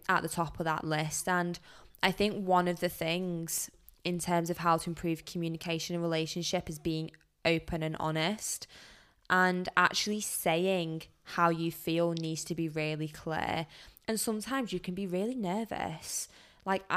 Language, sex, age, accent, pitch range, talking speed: English, female, 10-29, British, 165-190 Hz, 165 wpm